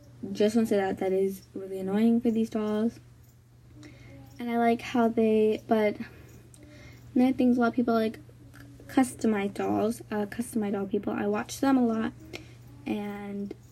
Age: 10-29